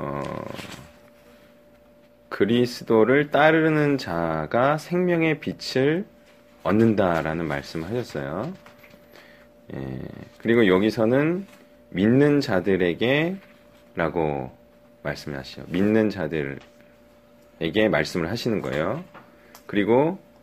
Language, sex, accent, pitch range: Korean, male, native, 90-130 Hz